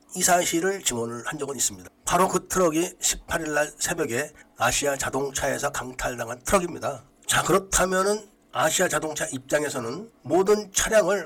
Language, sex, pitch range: Korean, male, 135-185 Hz